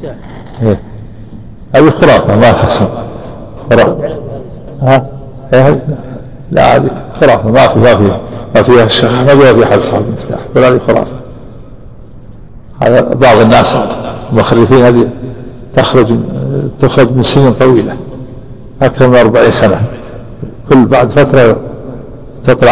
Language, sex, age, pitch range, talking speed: Arabic, male, 60-79, 115-125 Hz, 120 wpm